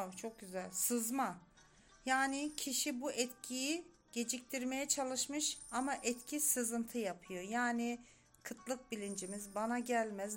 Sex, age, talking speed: female, 40-59, 105 wpm